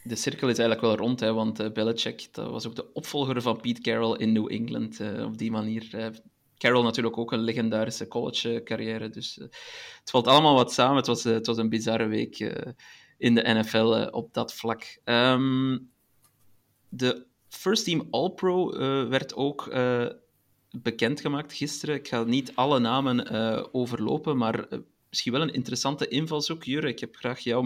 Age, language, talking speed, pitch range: 30-49, Dutch, 190 wpm, 115-140 Hz